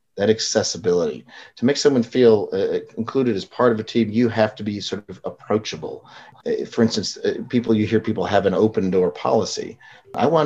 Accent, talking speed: American, 200 wpm